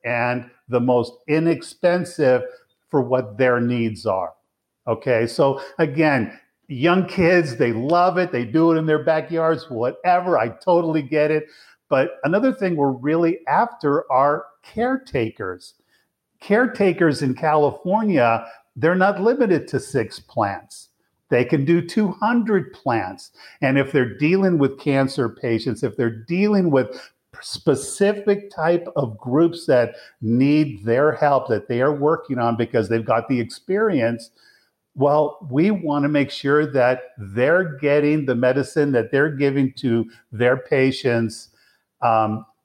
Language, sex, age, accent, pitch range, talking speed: English, male, 50-69, American, 120-160 Hz, 135 wpm